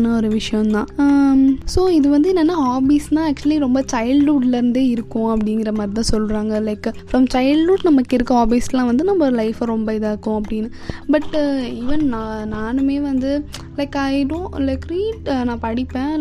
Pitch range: 230-290 Hz